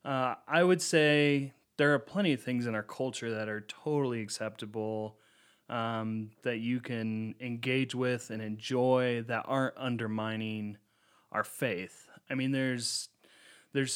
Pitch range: 110-130 Hz